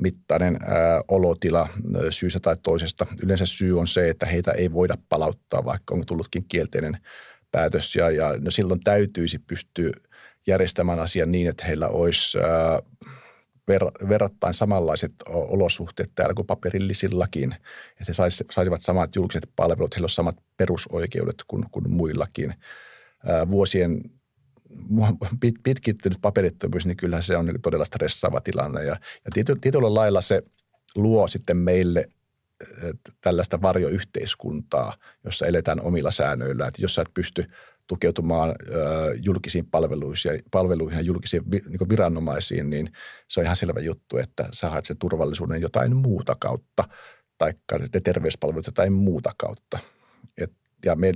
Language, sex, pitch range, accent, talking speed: Finnish, male, 85-100 Hz, native, 135 wpm